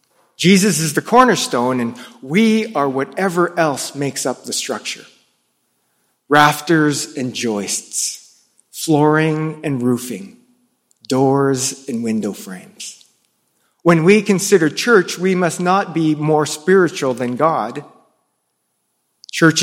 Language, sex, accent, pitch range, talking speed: English, male, American, 125-165 Hz, 110 wpm